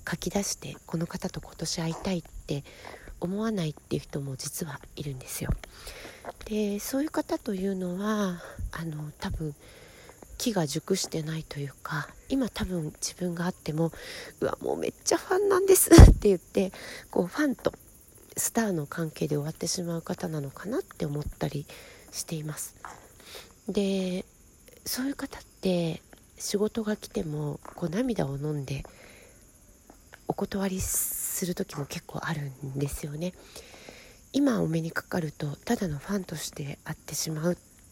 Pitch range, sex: 155-205 Hz, female